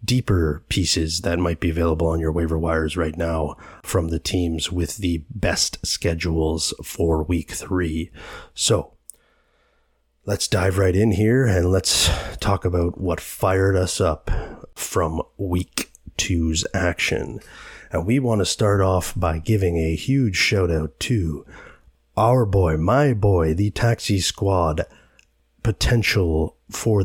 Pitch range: 85-110 Hz